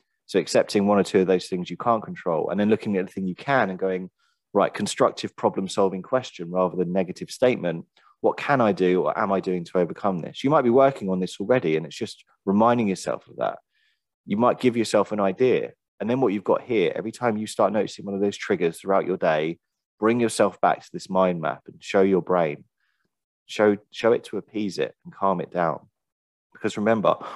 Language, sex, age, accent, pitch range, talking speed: English, male, 20-39, British, 95-110 Hz, 220 wpm